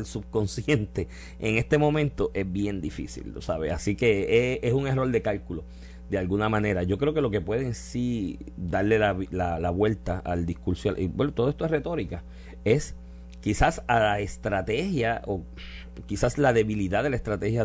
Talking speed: 180 wpm